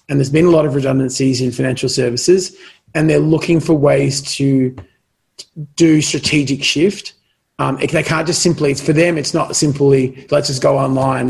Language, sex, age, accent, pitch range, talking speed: English, male, 30-49, Australian, 130-150 Hz, 175 wpm